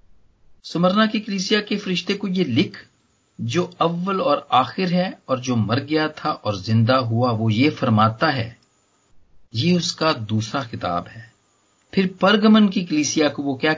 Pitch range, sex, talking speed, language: 120-185 Hz, male, 160 wpm, Hindi